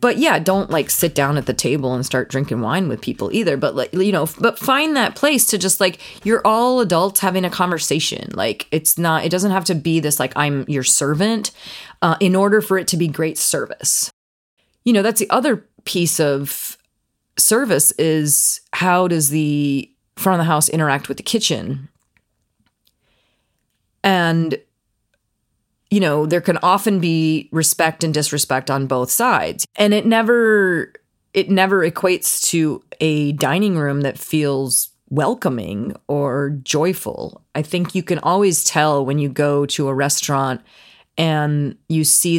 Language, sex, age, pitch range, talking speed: English, female, 30-49, 140-180 Hz, 165 wpm